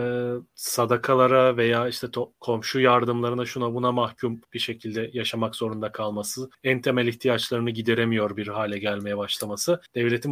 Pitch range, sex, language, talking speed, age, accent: 115-145 Hz, male, Turkish, 130 wpm, 30-49, native